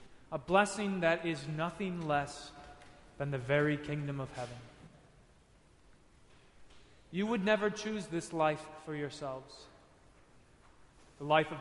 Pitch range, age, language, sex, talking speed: 145-175 Hz, 30-49, English, male, 120 wpm